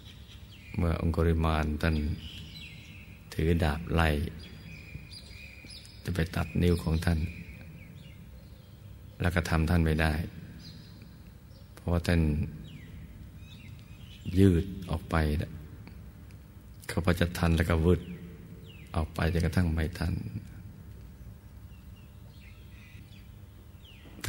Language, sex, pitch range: Thai, male, 80-100 Hz